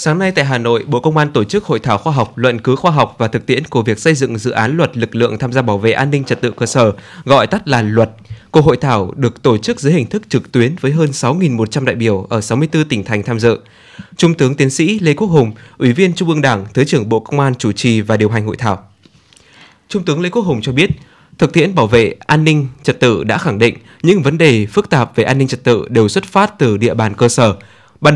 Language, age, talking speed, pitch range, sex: Vietnamese, 20-39, 270 wpm, 115-155 Hz, male